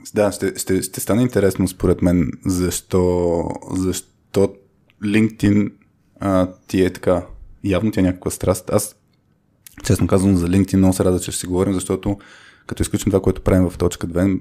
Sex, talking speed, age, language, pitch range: male, 165 wpm, 20-39, Bulgarian, 90-100 Hz